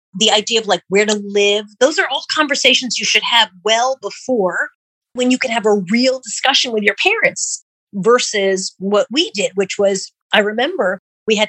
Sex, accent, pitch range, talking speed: female, American, 190-275 Hz, 190 wpm